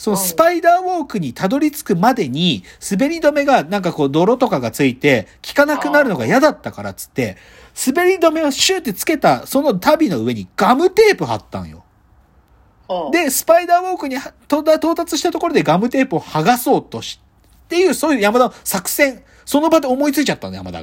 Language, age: Japanese, 40-59